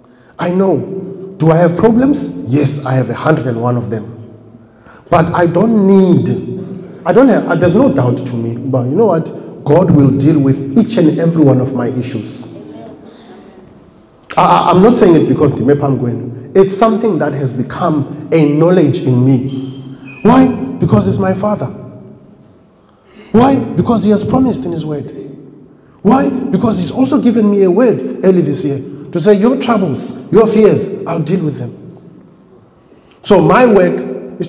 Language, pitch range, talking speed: English, 135-205 Hz, 165 wpm